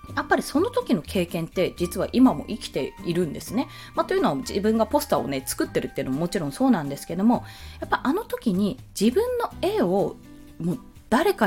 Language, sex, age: Japanese, female, 20-39